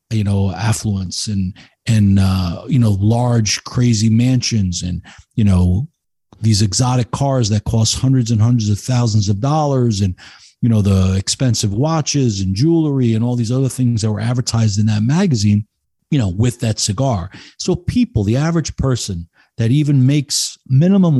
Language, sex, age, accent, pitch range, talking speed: English, male, 50-69, American, 105-145 Hz, 165 wpm